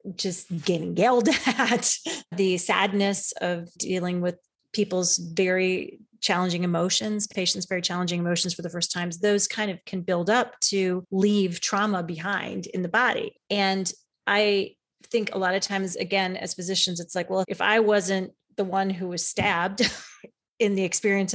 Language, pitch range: English, 180-230 Hz